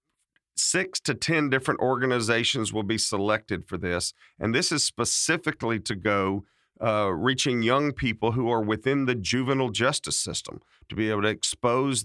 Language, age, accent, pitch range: English, 40-59, American, 105-125 Hz